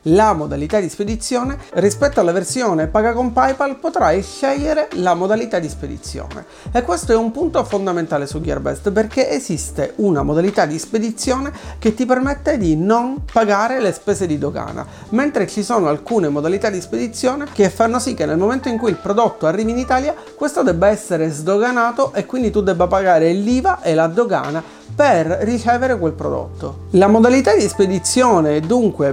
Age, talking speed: 40-59, 170 wpm